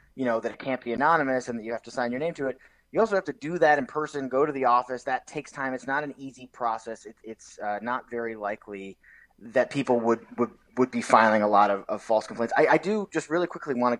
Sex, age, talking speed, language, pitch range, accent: male, 30-49, 275 wpm, English, 115-155 Hz, American